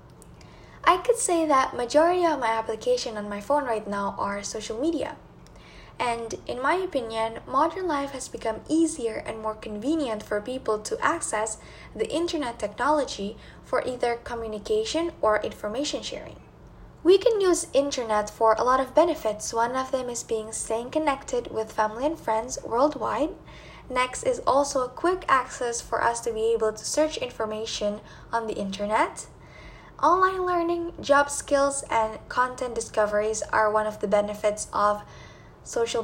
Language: English